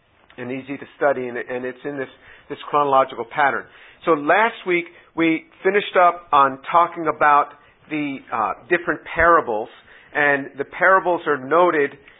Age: 50-69